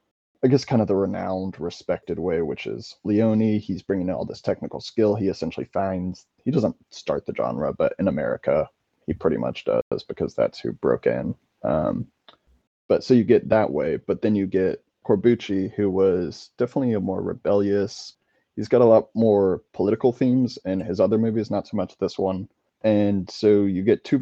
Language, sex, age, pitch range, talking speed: English, male, 20-39, 95-120 Hz, 190 wpm